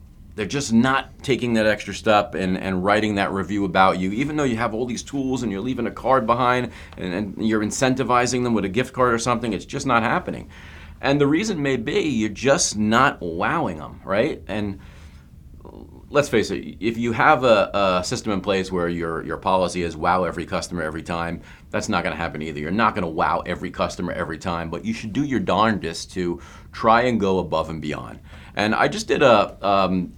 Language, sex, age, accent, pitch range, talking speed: English, male, 40-59, American, 85-110 Hz, 215 wpm